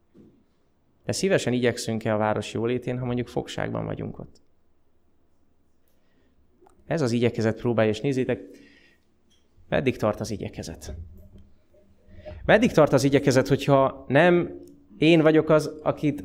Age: 20-39